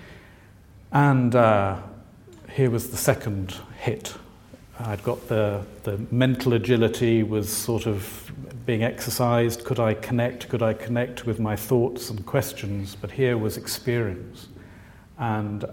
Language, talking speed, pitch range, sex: English, 130 wpm, 105-125 Hz, male